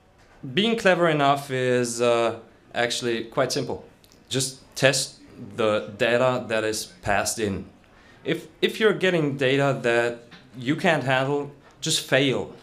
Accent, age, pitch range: German, 30-49, 115-145 Hz